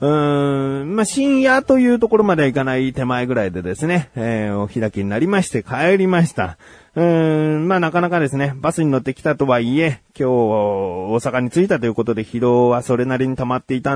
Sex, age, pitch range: male, 30-49, 115-170 Hz